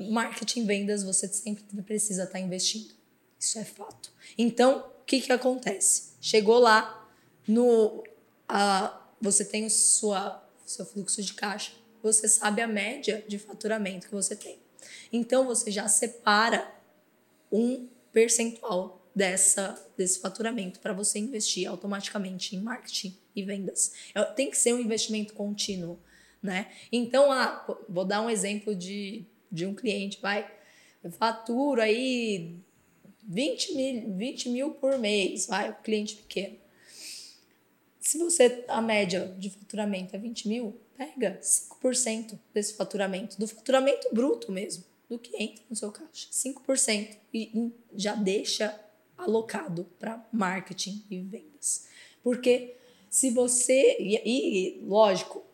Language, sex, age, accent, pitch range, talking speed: Portuguese, female, 10-29, Brazilian, 200-235 Hz, 125 wpm